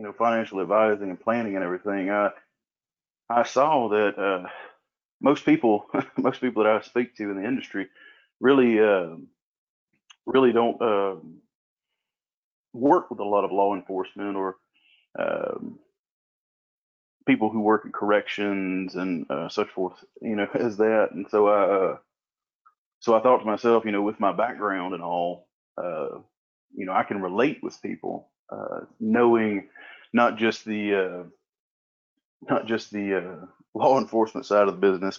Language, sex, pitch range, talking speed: English, male, 95-115 Hz, 150 wpm